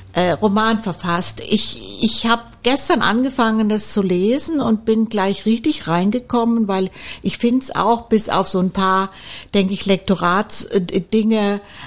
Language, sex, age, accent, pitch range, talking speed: German, female, 50-69, German, 185-230 Hz, 140 wpm